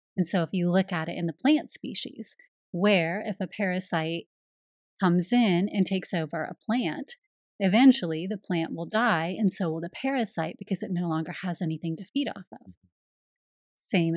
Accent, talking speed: American, 180 wpm